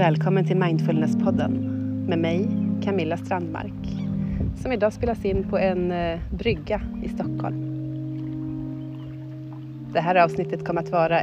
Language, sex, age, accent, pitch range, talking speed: Swedish, female, 30-49, native, 160-200 Hz, 120 wpm